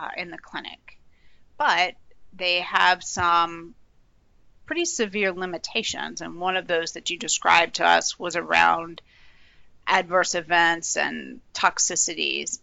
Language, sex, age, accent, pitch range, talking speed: English, female, 30-49, American, 170-205 Hz, 125 wpm